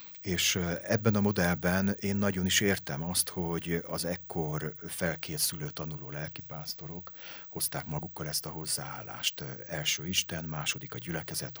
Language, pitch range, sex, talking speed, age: Hungarian, 80-95 Hz, male, 130 wpm, 40-59